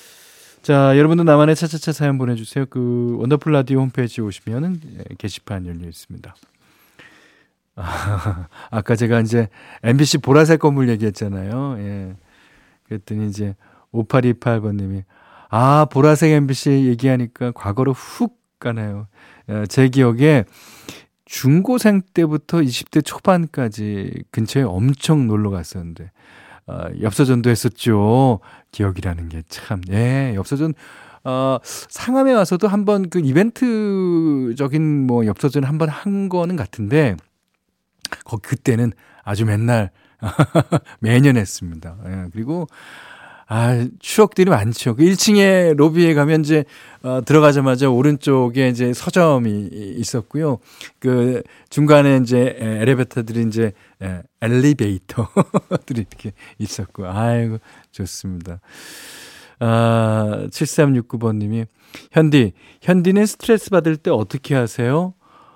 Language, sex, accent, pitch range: Korean, male, native, 110-150 Hz